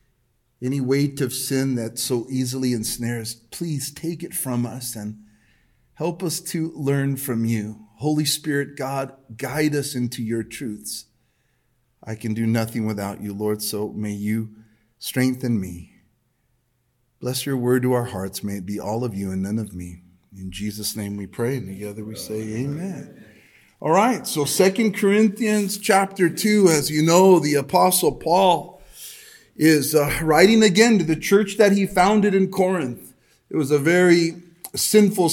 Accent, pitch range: American, 120-170 Hz